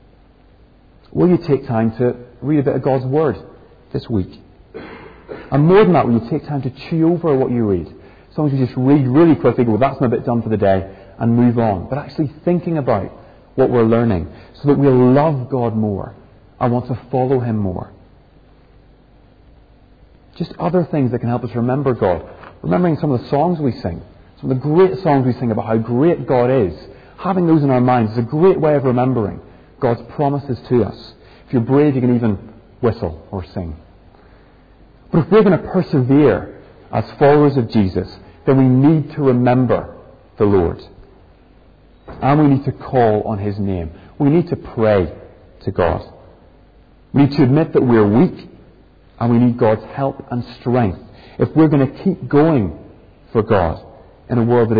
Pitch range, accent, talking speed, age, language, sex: 110-140 Hz, British, 190 wpm, 40-59, English, male